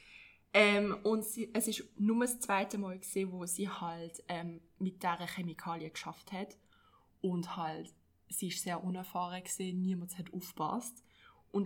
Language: German